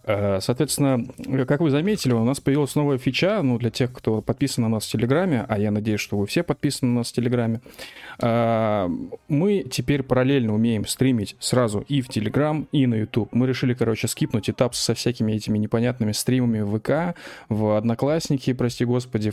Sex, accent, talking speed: male, native, 175 wpm